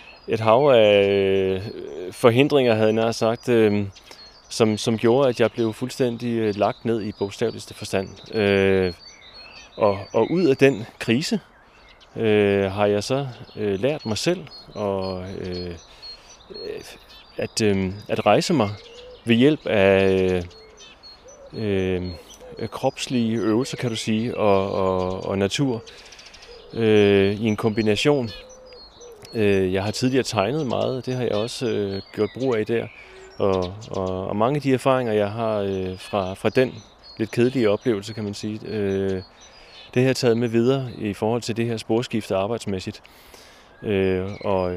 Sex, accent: male, native